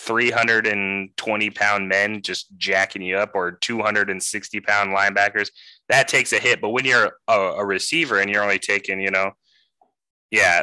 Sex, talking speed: male, 160 wpm